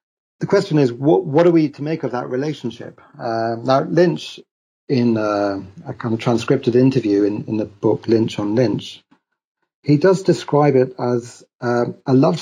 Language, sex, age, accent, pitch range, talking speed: English, male, 40-59, British, 105-130 Hz, 185 wpm